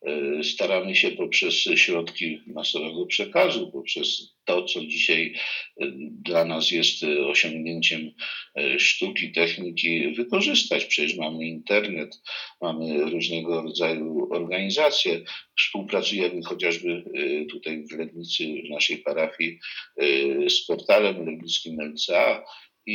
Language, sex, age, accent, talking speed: Polish, male, 50-69, native, 95 wpm